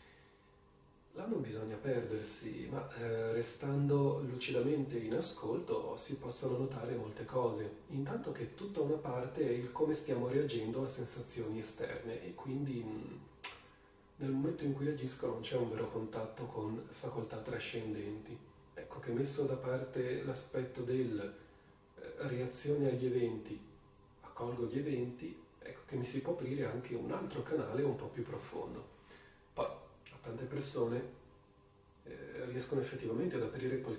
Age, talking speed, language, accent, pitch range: 30-49, 140 wpm, Italian, native, 110-135 Hz